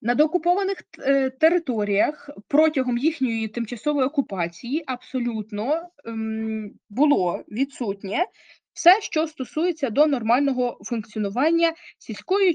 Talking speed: 80 wpm